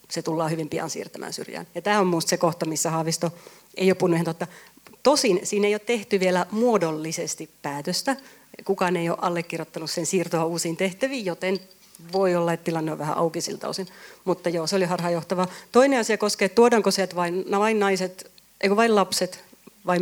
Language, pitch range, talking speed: Finnish, 170-195 Hz, 185 wpm